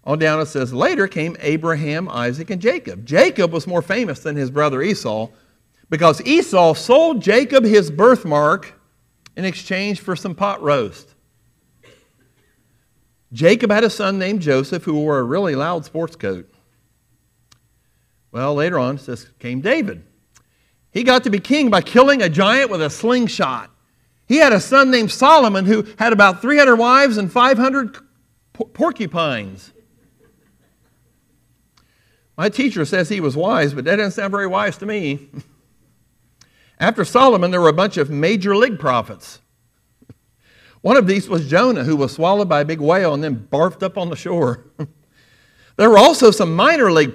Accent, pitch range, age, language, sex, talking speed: American, 125-200 Hz, 50-69, English, male, 160 wpm